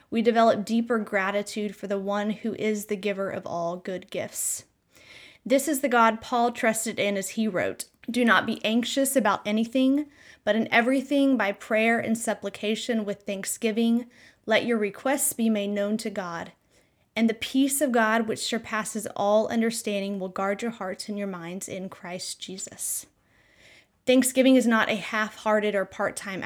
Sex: female